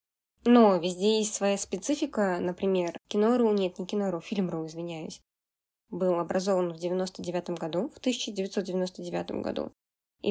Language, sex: Russian, female